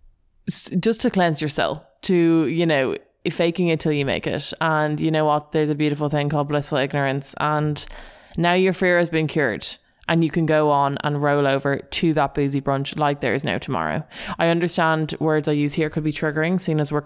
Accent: Irish